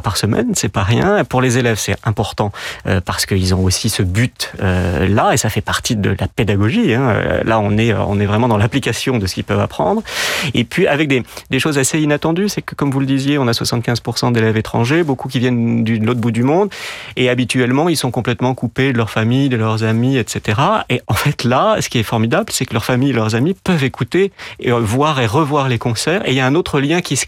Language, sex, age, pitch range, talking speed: French, male, 30-49, 110-140 Hz, 250 wpm